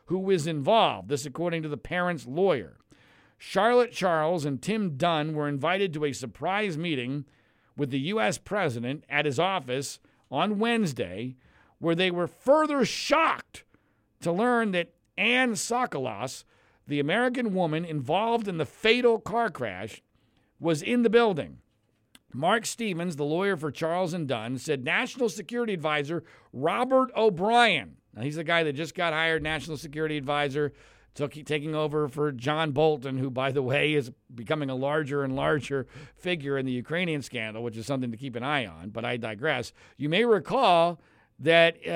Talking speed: 160 wpm